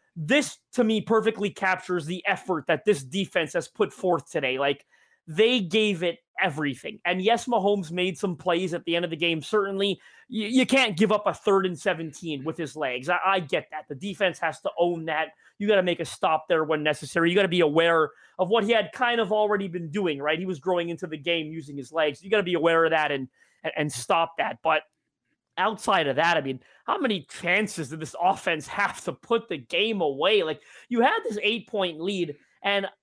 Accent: American